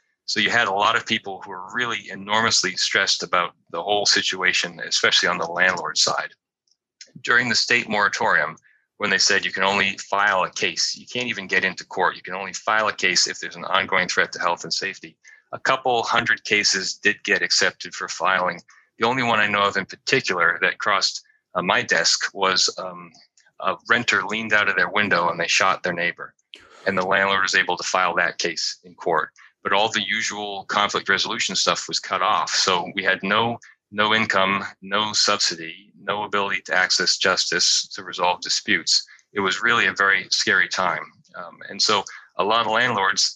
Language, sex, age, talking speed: English, male, 30-49, 195 wpm